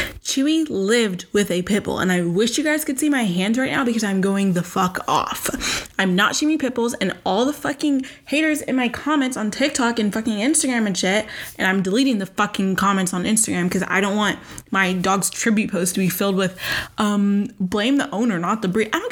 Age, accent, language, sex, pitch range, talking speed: 20-39, American, English, female, 190-245 Hz, 220 wpm